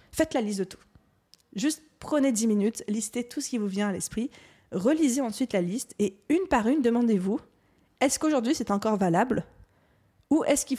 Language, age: French, 20-39